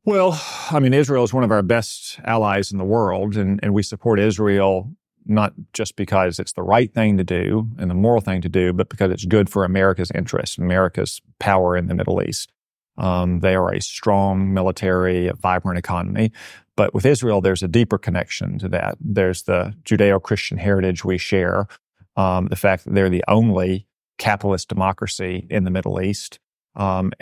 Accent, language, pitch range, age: American, English, 95-110 Hz, 40-59